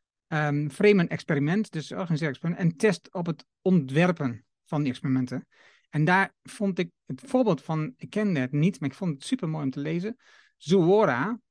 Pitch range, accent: 150-195 Hz, Dutch